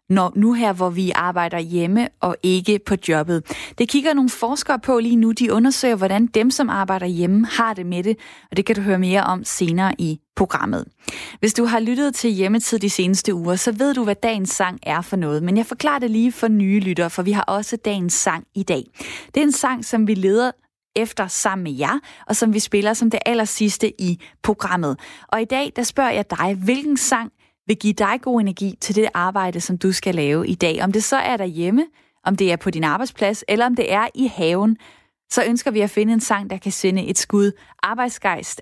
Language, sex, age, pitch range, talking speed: Danish, female, 20-39, 185-230 Hz, 225 wpm